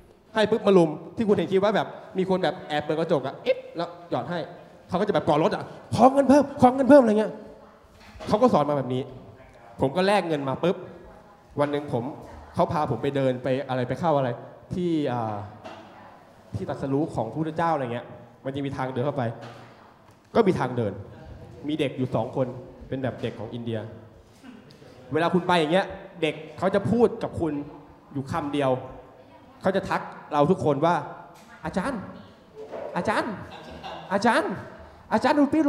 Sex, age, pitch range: male, 20-39, 140-215 Hz